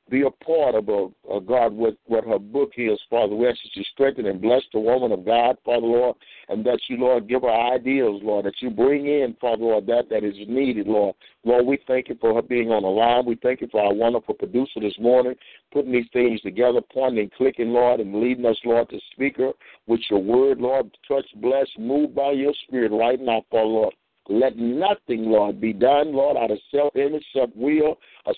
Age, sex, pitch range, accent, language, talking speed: 60-79, male, 115-145 Hz, American, English, 225 wpm